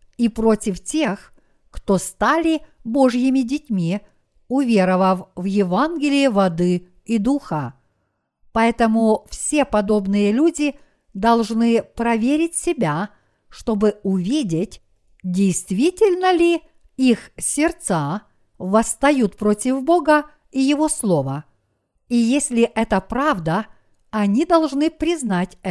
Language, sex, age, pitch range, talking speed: Russian, female, 50-69, 195-280 Hz, 90 wpm